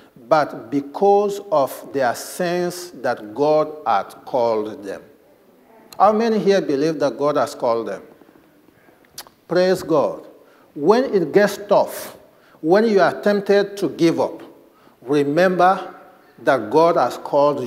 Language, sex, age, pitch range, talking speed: English, male, 50-69, 160-215 Hz, 125 wpm